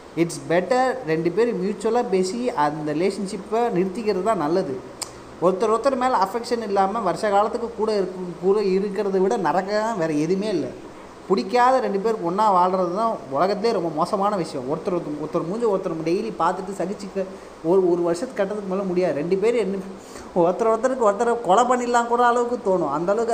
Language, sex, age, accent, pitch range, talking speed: Tamil, male, 20-39, native, 170-225 Hz, 160 wpm